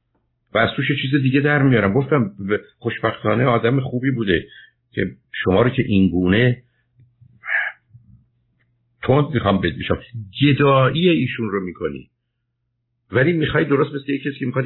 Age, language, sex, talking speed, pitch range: 50-69, Persian, male, 125 wpm, 115-140 Hz